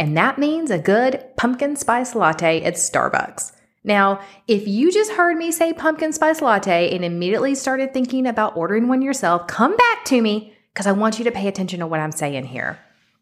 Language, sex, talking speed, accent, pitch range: English, female, 200 wpm, American, 165-255 Hz